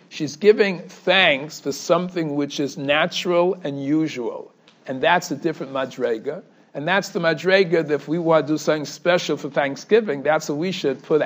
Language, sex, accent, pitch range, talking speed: English, male, American, 150-185 Hz, 180 wpm